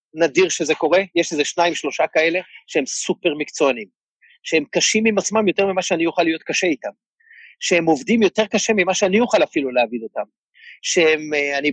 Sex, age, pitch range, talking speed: male, 40-59, 160-230 Hz, 170 wpm